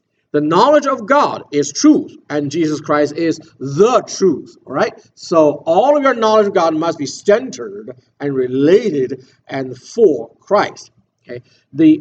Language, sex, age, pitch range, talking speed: English, male, 50-69, 135-200 Hz, 155 wpm